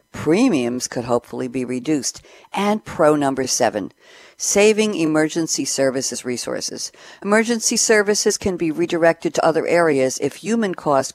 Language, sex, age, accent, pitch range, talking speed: English, female, 60-79, American, 130-185 Hz, 125 wpm